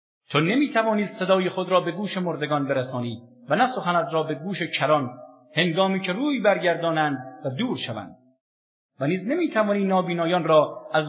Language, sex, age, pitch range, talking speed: English, male, 50-69, 135-200 Hz, 170 wpm